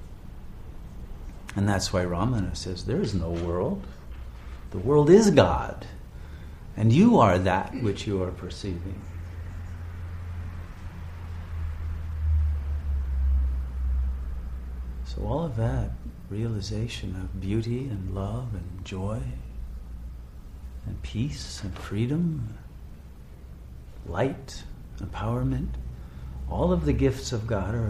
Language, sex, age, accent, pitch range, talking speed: English, male, 50-69, American, 65-100 Hz, 95 wpm